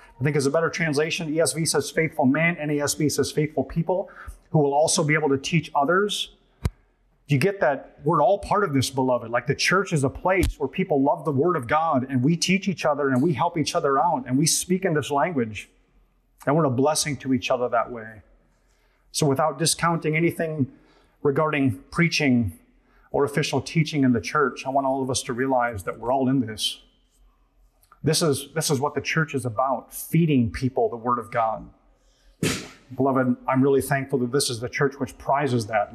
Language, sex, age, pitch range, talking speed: English, male, 30-49, 130-155 Hz, 205 wpm